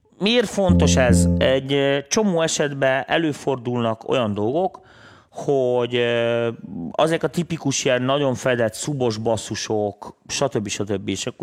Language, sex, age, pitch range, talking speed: Hungarian, male, 30-49, 105-135 Hz, 110 wpm